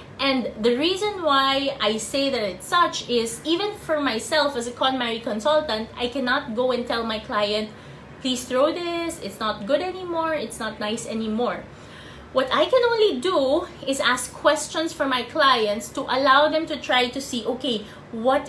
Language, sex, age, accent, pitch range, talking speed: English, female, 20-39, Filipino, 230-295 Hz, 180 wpm